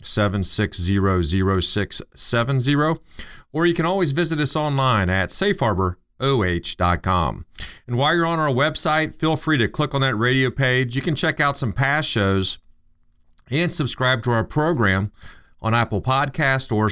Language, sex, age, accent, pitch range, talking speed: English, male, 40-59, American, 105-145 Hz, 140 wpm